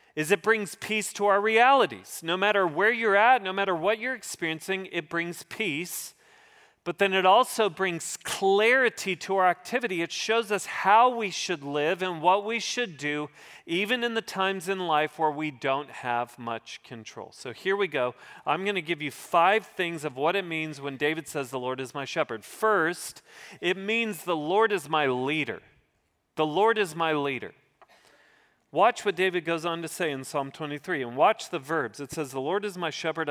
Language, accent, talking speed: English, American, 200 wpm